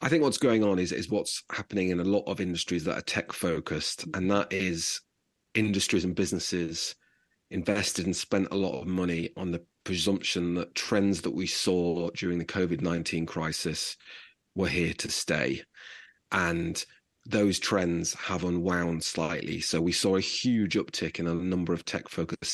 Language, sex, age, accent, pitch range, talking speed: English, male, 30-49, British, 85-100 Hz, 170 wpm